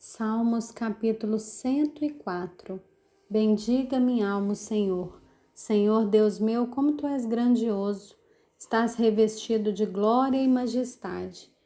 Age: 30-49